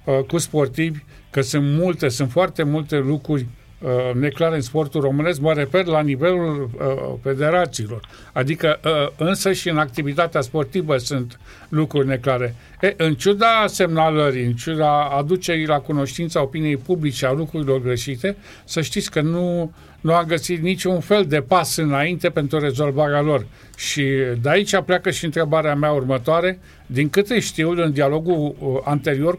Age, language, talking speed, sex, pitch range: 50-69, Romanian, 145 wpm, male, 135-170 Hz